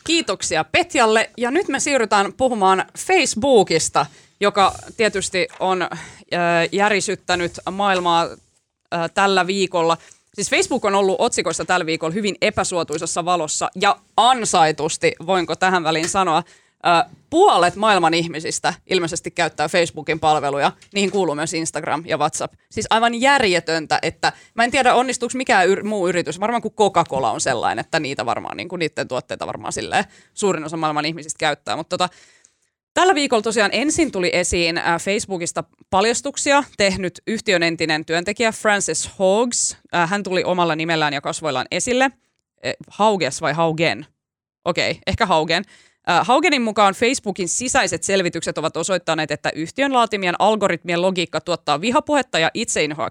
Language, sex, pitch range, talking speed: Finnish, female, 165-225 Hz, 140 wpm